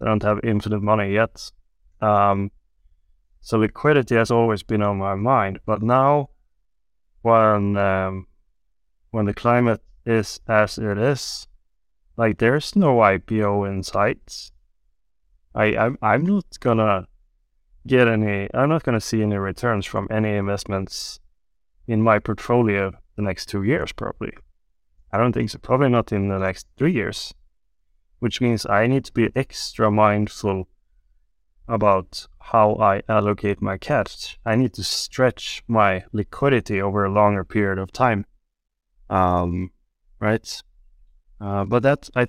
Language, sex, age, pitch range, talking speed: English, male, 20-39, 90-115 Hz, 140 wpm